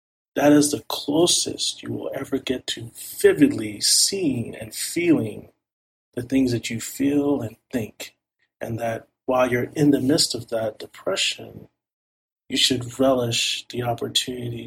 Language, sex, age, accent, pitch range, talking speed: English, male, 40-59, American, 115-130 Hz, 145 wpm